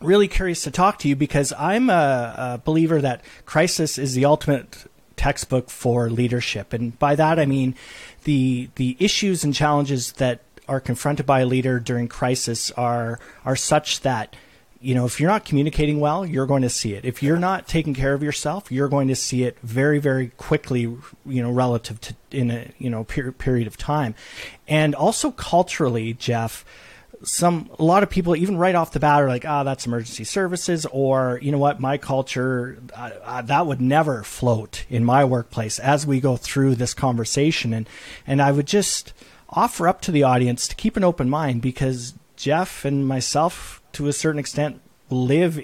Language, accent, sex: English, American, male